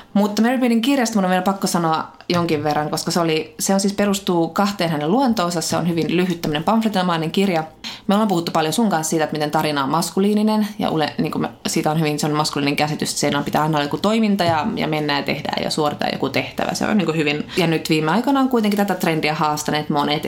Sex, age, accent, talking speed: female, 20-39, native, 235 wpm